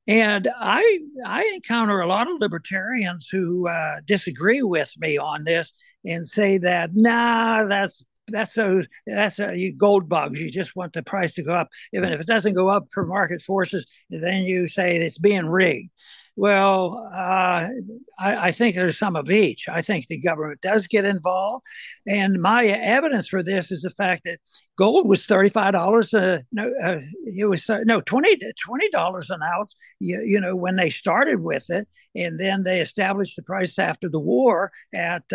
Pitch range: 180-220 Hz